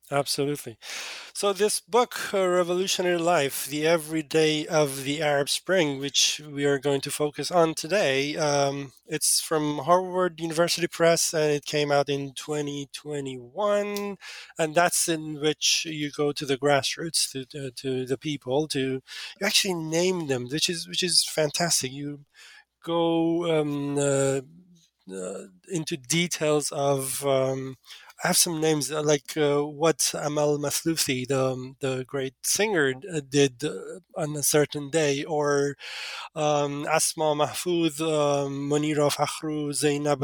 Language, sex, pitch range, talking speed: English, male, 140-170 Hz, 140 wpm